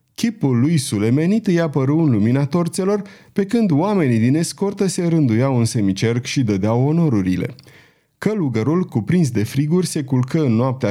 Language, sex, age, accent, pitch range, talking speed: Romanian, male, 30-49, native, 115-160 Hz, 155 wpm